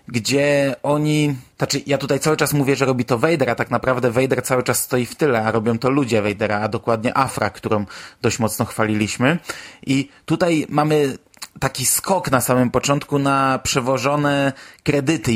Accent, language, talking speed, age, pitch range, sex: native, Polish, 170 wpm, 20-39, 115-140 Hz, male